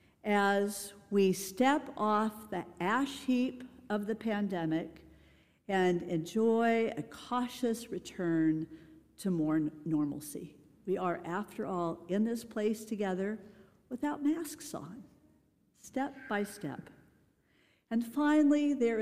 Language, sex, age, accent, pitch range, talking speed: English, female, 50-69, American, 180-240 Hz, 110 wpm